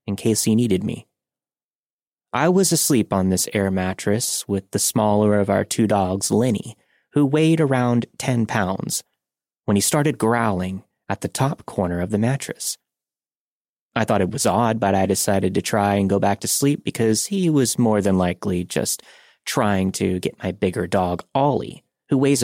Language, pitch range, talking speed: English, 95-125 Hz, 180 wpm